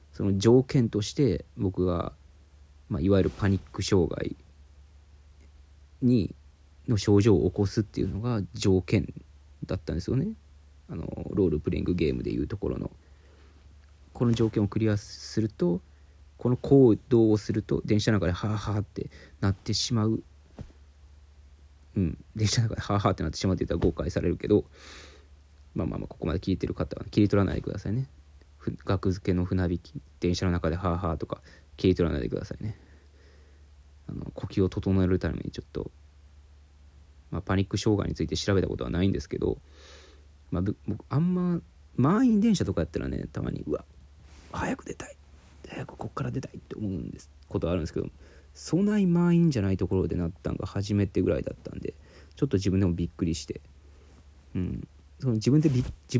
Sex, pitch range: male, 75-105 Hz